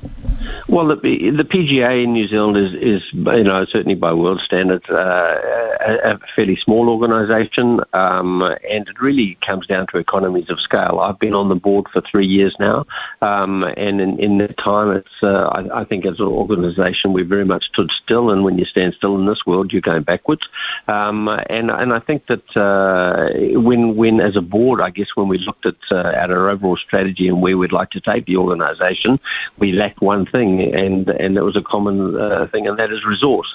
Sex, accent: male, Australian